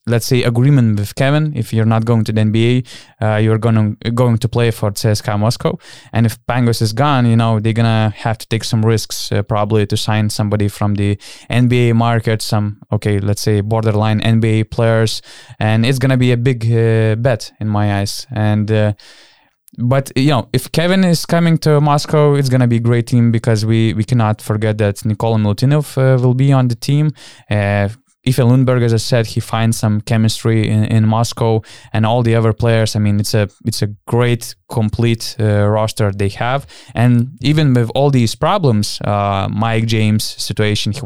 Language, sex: English, male